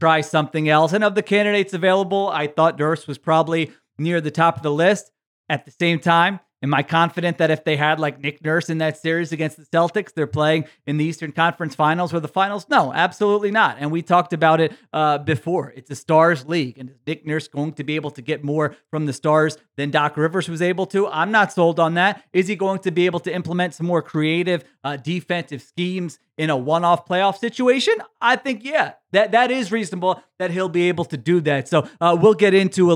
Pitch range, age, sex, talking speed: 150-175 Hz, 30-49, male, 230 wpm